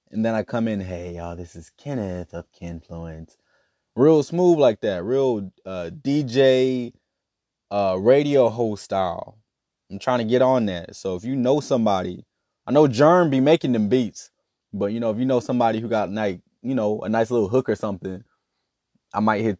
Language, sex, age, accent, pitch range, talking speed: English, male, 20-39, American, 110-145 Hz, 190 wpm